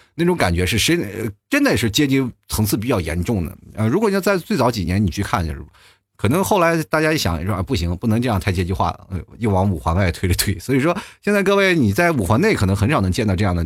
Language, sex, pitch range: Chinese, male, 95-150 Hz